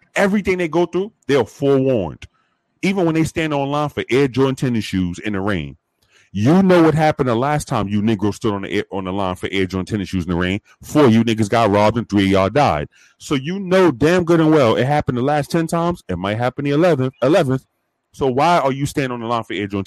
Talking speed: 255 wpm